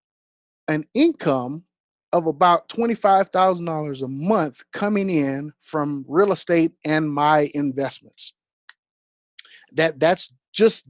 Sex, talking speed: male, 100 wpm